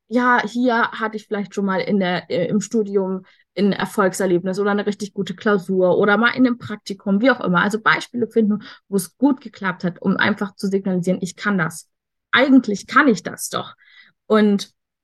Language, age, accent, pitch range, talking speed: German, 20-39, German, 185-230 Hz, 190 wpm